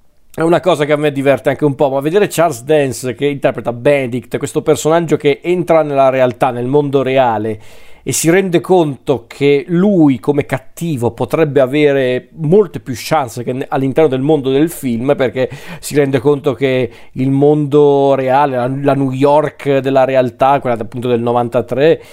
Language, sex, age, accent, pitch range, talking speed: Italian, male, 40-59, native, 130-150 Hz, 170 wpm